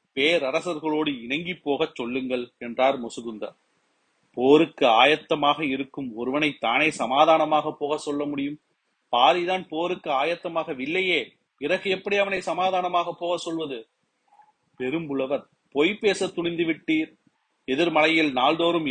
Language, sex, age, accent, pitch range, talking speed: Tamil, male, 40-59, native, 140-175 Hz, 95 wpm